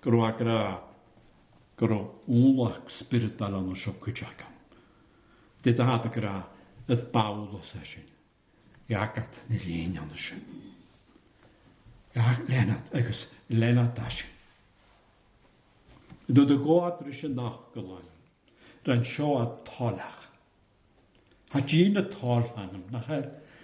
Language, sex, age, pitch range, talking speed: English, male, 60-79, 110-150 Hz, 50 wpm